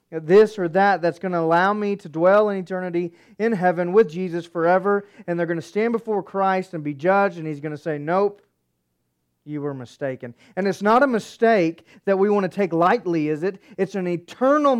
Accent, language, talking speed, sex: American, English, 210 wpm, male